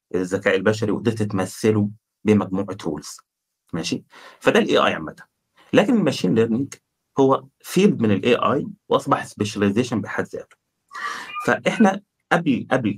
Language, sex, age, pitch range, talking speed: Arabic, male, 30-49, 105-135 Hz, 120 wpm